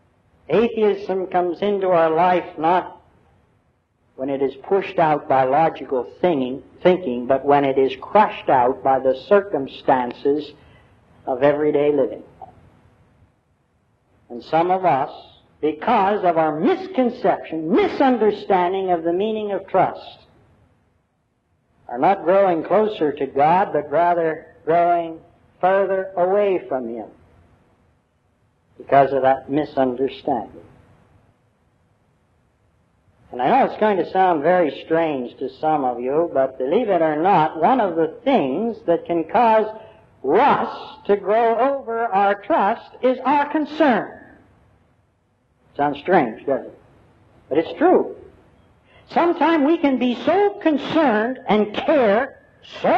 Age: 60-79